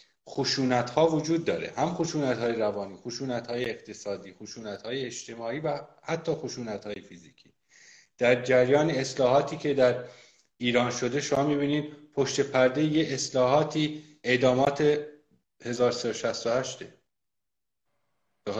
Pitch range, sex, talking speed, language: 120-155 Hz, male, 120 wpm, Persian